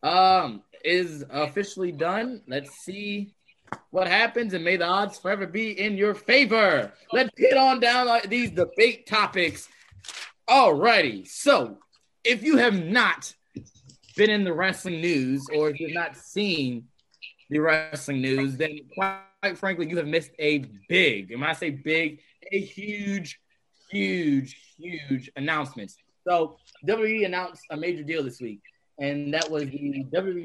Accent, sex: American, male